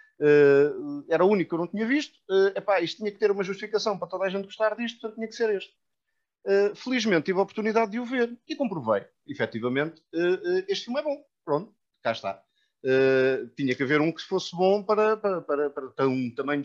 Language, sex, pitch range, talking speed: Portuguese, male, 120-170 Hz, 225 wpm